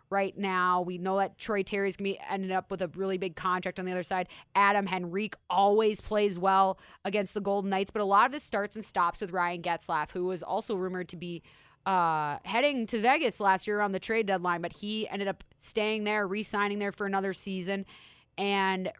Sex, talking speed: female, 220 wpm